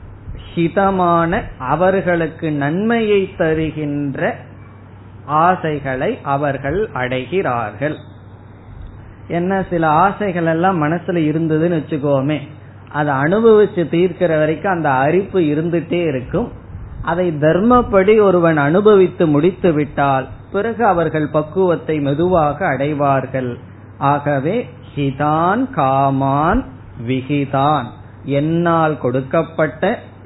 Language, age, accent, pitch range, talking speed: Tamil, 20-39, native, 130-175 Hz, 75 wpm